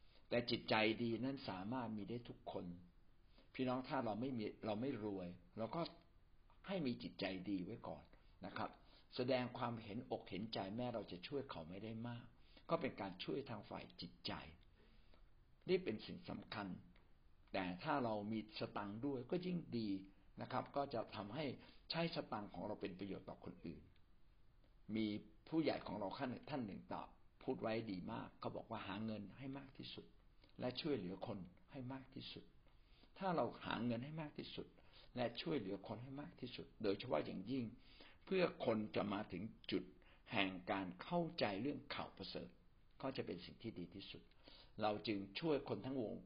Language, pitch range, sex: Thai, 95-130 Hz, male